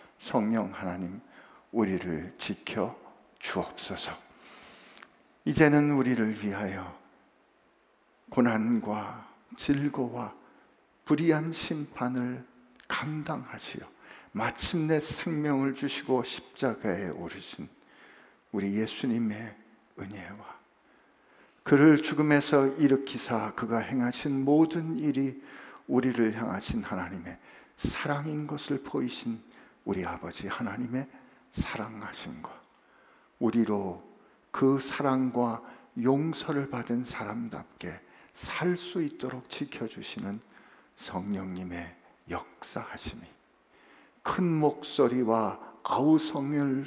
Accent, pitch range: native, 115-145 Hz